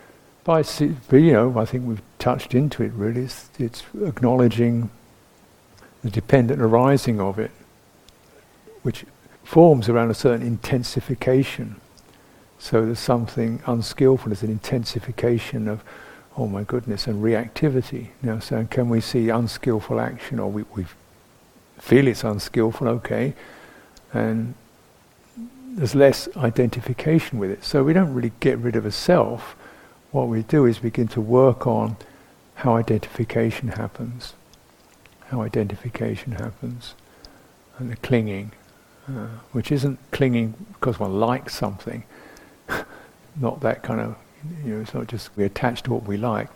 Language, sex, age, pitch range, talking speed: English, male, 60-79, 110-130 Hz, 130 wpm